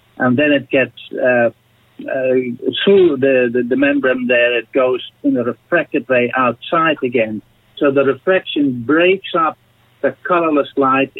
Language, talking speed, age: English, 150 wpm, 60-79